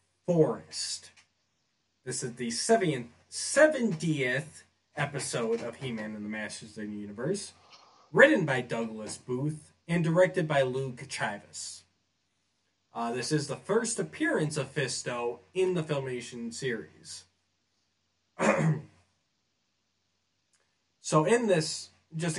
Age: 20-39